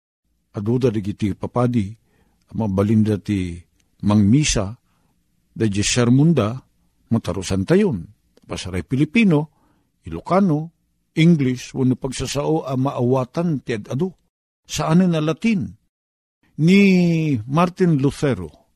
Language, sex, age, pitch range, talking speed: Filipino, male, 50-69, 110-165 Hz, 85 wpm